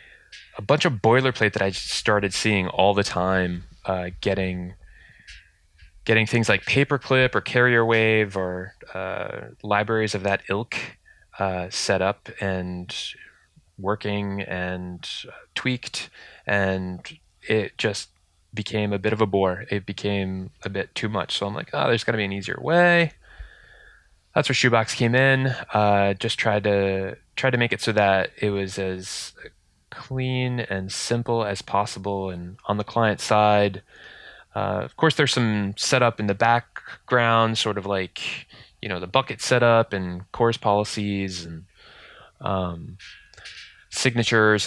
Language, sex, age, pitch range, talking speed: English, male, 20-39, 95-115 Hz, 150 wpm